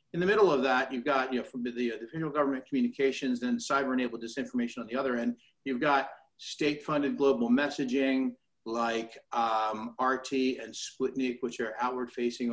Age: 50-69